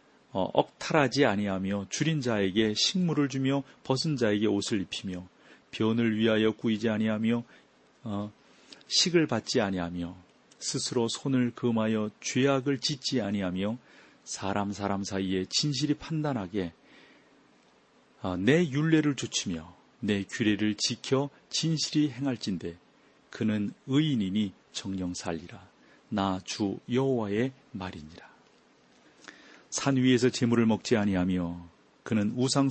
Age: 40-59